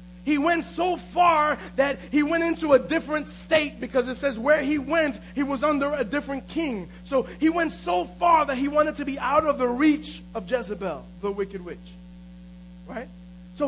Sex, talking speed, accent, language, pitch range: male, 195 wpm, American, English, 225-300 Hz